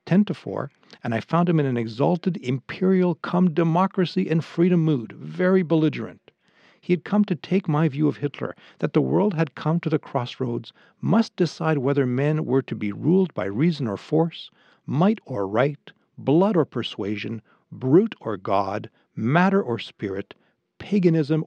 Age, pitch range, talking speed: 60-79, 130-180 Hz, 155 wpm